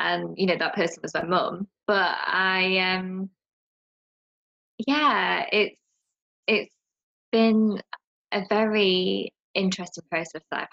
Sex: female